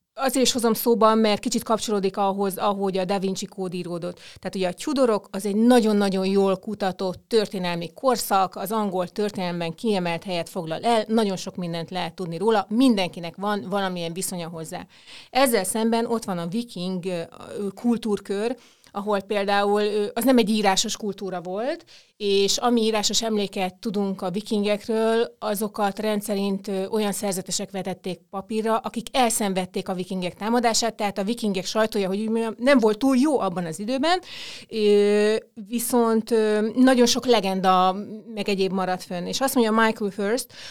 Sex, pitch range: female, 190-230 Hz